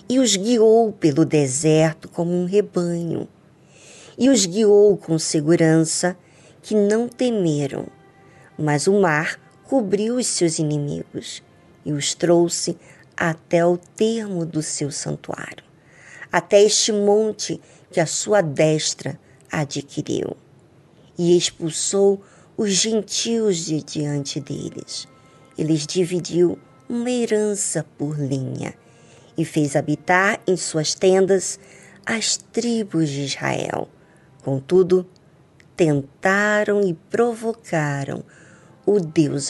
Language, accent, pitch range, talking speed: Portuguese, Brazilian, 155-205 Hz, 105 wpm